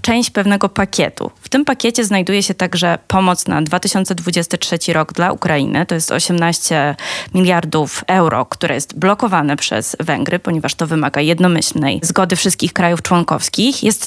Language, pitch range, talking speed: Polish, 160-195 Hz, 145 wpm